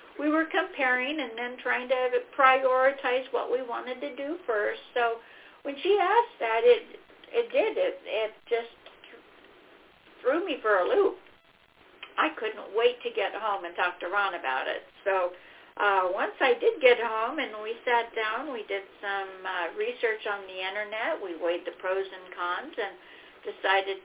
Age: 60-79